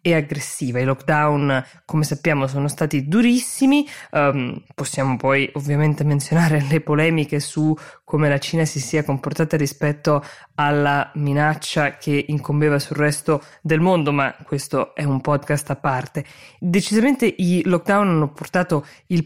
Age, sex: 20-39, female